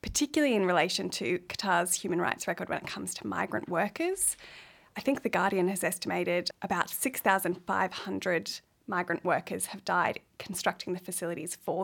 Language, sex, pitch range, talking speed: English, female, 180-220 Hz, 150 wpm